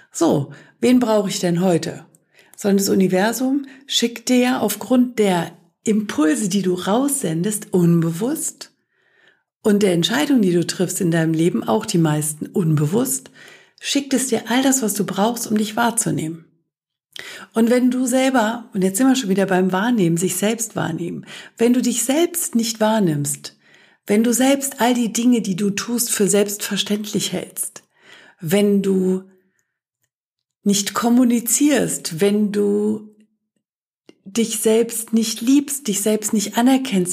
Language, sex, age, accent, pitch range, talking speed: German, female, 60-79, German, 180-235 Hz, 145 wpm